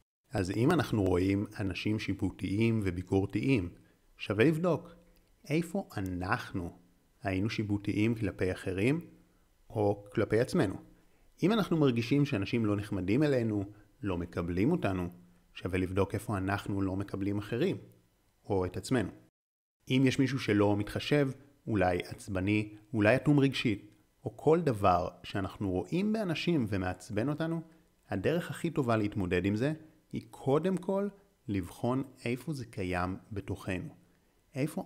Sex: male